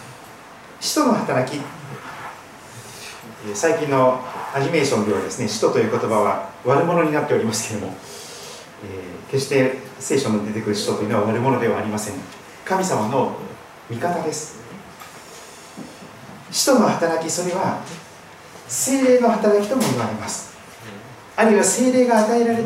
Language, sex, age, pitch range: Japanese, male, 40-59, 135-225 Hz